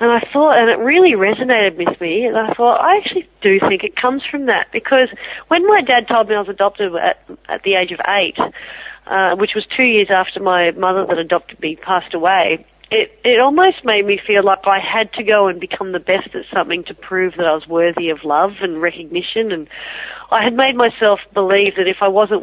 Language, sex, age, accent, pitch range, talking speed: English, female, 40-59, Australian, 180-235 Hz, 225 wpm